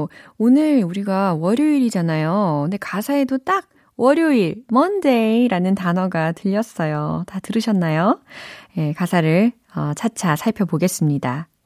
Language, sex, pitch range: Korean, female, 160-230 Hz